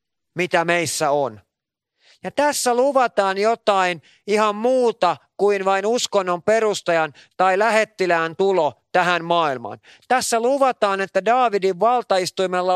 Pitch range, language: 170-215 Hz, Finnish